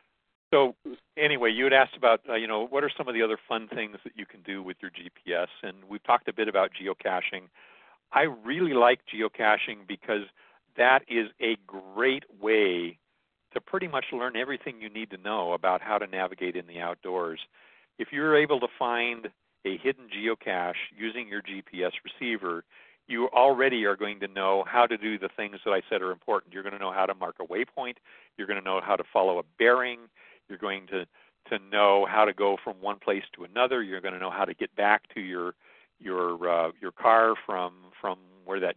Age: 50-69